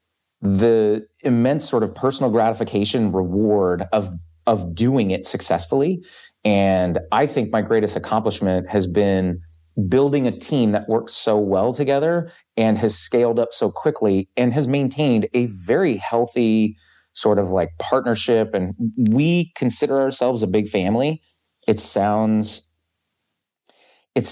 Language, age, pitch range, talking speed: English, 30-49, 95-120 Hz, 135 wpm